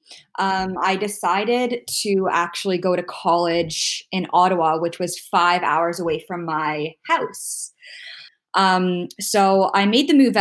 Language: English